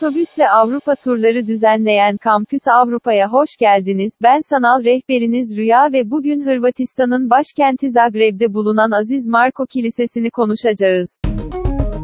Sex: female